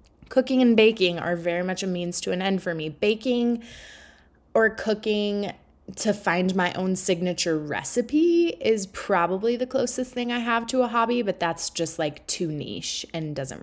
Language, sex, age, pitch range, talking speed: English, female, 20-39, 165-230 Hz, 175 wpm